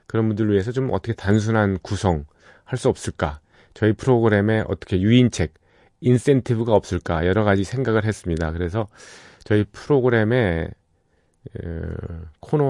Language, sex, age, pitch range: Korean, male, 40-59, 90-115 Hz